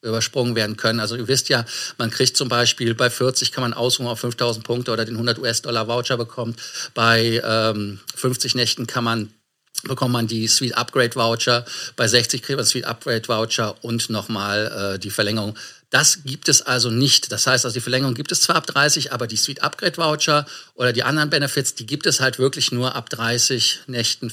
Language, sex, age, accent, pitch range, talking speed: German, male, 50-69, German, 115-130 Hz, 185 wpm